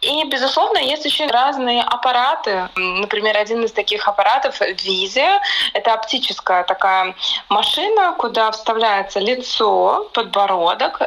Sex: female